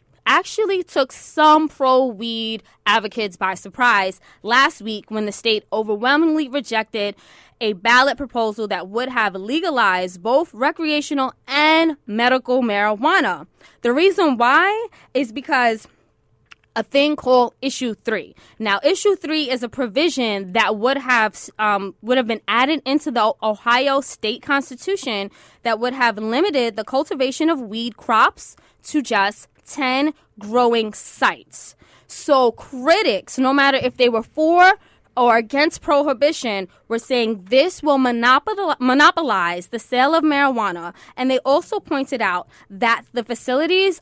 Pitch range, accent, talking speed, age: 220-280 Hz, American, 130 wpm, 20-39